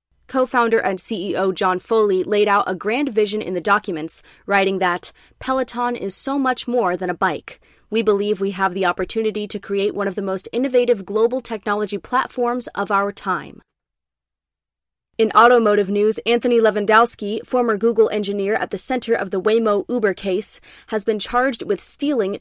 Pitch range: 190-235 Hz